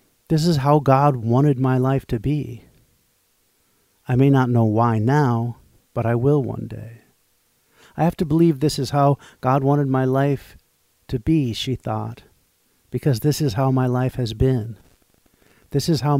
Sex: male